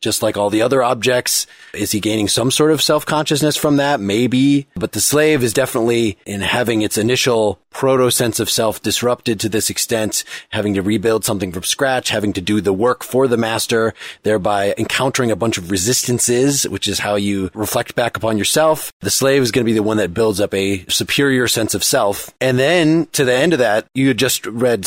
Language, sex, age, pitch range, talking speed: English, male, 30-49, 105-130 Hz, 205 wpm